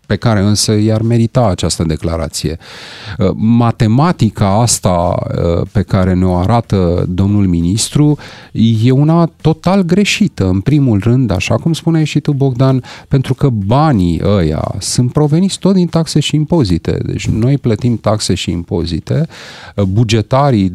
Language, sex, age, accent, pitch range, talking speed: Romanian, male, 30-49, native, 105-135 Hz, 135 wpm